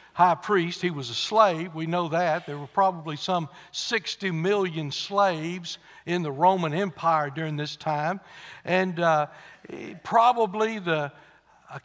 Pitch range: 160-200 Hz